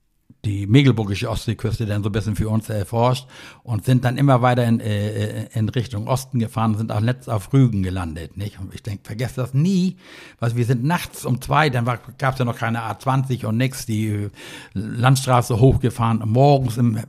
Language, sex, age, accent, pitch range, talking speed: German, male, 60-79, German, 115-135 Hz, 185 wpm